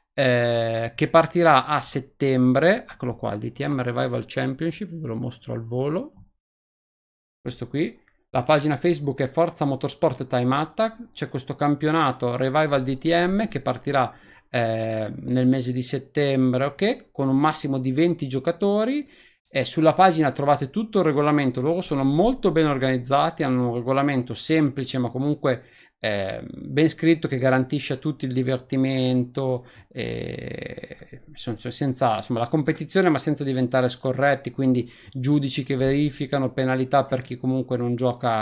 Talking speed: 140 wpm